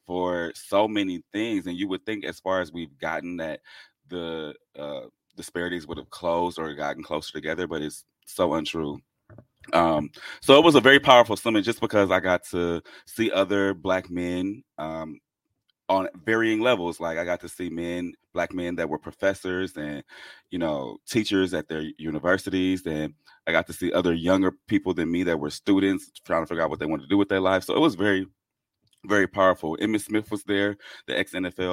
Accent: American